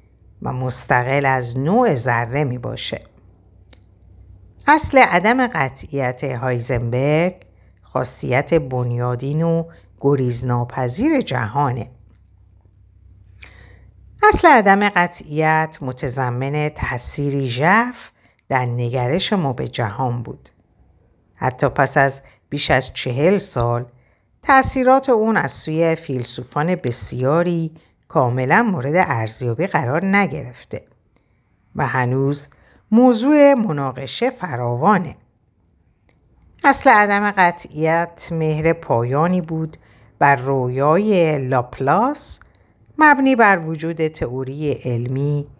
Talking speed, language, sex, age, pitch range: 85 wpm, Persian, female, 50-69, 120-165 Hz